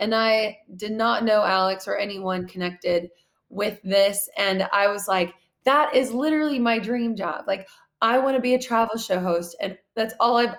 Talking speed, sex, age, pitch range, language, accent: 195 wpm, female, 20-39, 180-225 Hz, English, American